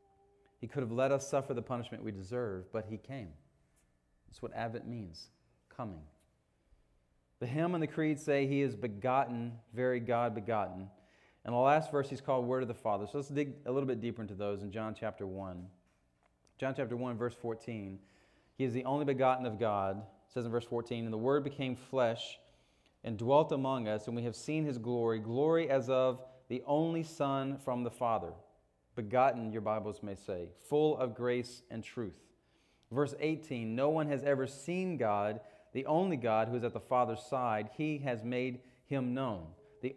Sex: male